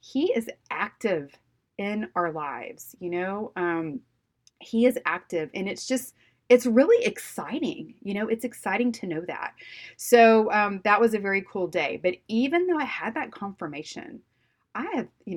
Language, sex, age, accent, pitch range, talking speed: English, female, 30-49, American, 170-235 Hz, 170 wpm